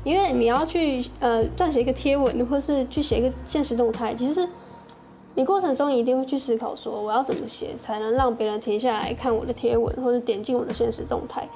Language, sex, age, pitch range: Chinese, female, 10-29, 225-270 Hz